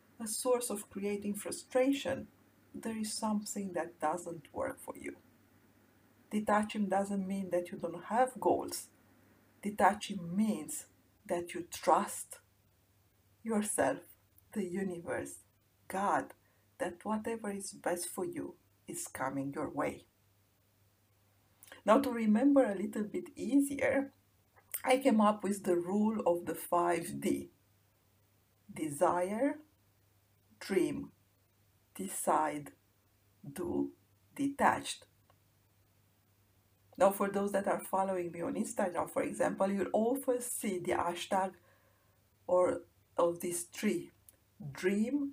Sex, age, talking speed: female, 50-69, 110 wpm